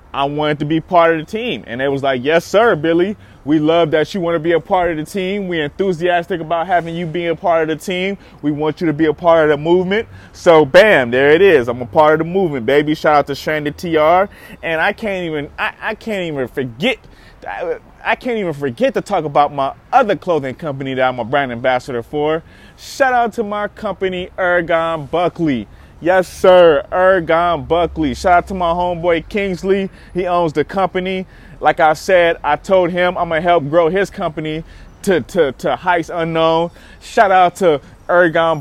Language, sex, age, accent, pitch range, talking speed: English, male, 20-39, American, 155-180 Hz, 210 wpm